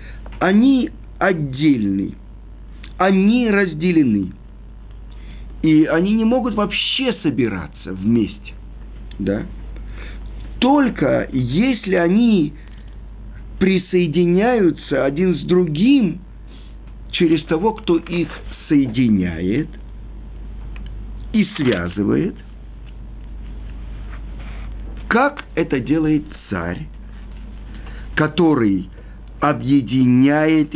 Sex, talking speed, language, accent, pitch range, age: male, 60 wpm, Russian, native, 110-185 Hz, 50-69